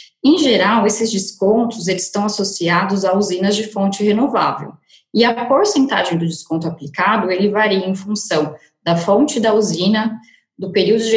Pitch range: 190-230 Hz